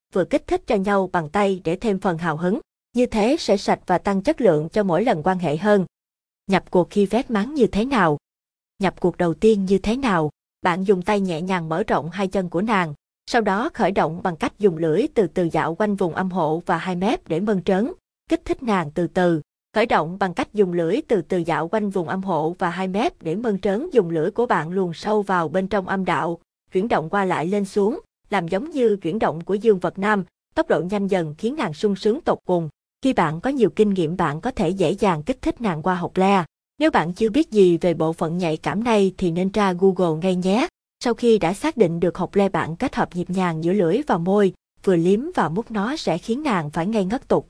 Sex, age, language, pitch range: female, 20-39, Vietnamese, 175-220 Hz